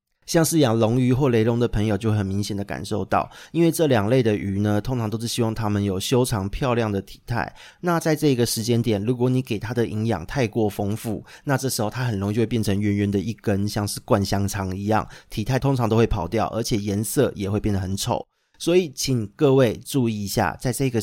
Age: 30-49